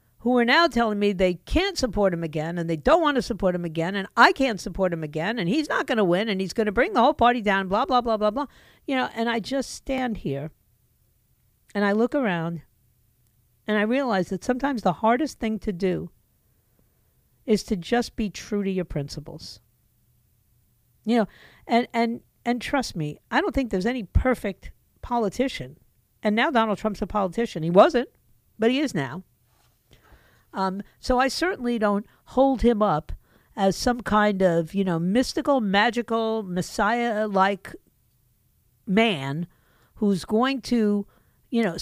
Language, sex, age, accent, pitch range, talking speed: English, female, 50-69, American, 170-240 Hz, 175 wpm